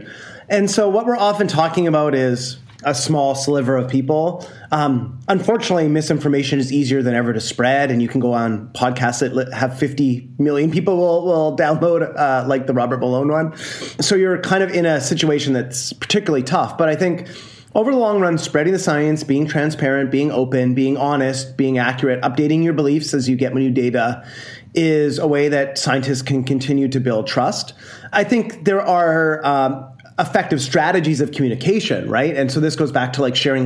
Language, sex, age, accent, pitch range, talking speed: English, male, 30-49, American, 130-170 Hz, 190 wpm